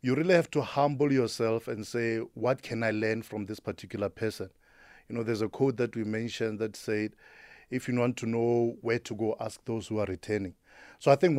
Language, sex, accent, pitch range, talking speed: English, male, South African, 110-130 Hz, 220 wpm